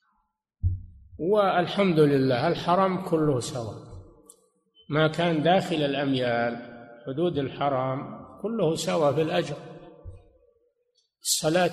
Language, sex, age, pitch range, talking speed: Arabic, male, 60-79, 140-175 Hz, 80 wpm